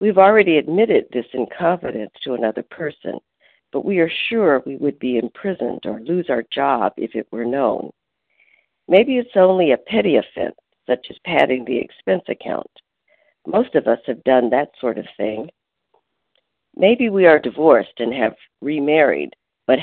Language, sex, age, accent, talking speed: English, female, 60-79, American, 165 wpm